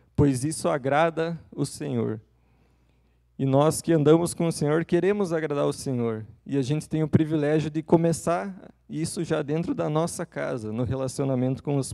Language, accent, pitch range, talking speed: Portuguese, Brazilian, 125-155 Hz, 170 wpm